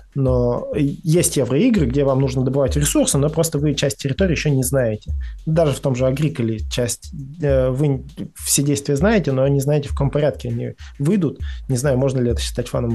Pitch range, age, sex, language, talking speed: 135-180 Hz, 20-39, male, Russian, 190 wpm